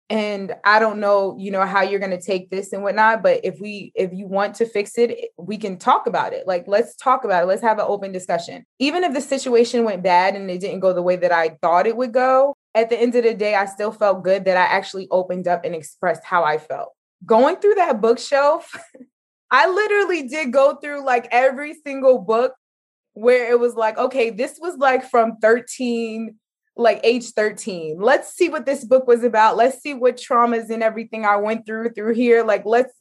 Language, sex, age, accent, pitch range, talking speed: English, female, 20-39, American, 195-245 Hz, 220 wpm